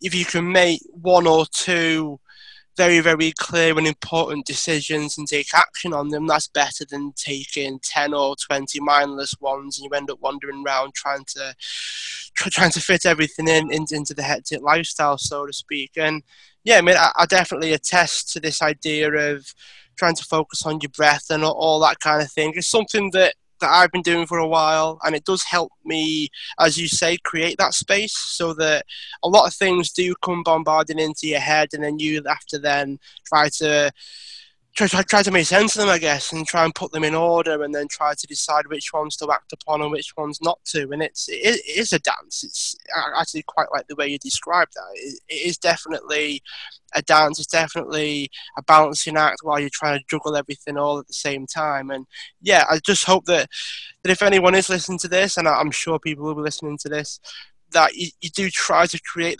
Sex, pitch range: male, 150-175 Hz